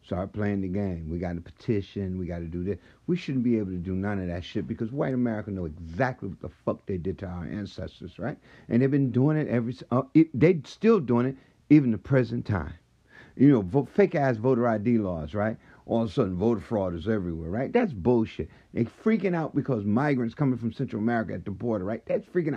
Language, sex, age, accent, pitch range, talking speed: English, male, 50-69, American, 100-135 Hz, 230 wpm